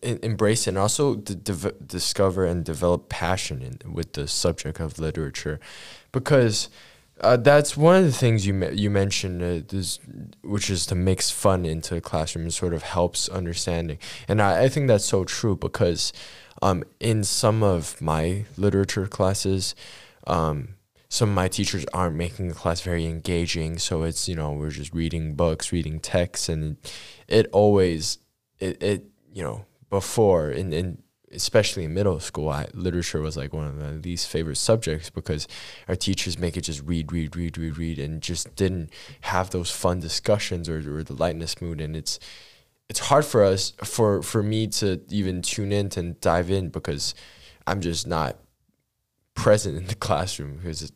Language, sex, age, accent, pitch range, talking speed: English, male, 10-29, American, 80-100 Hz, 175 wpm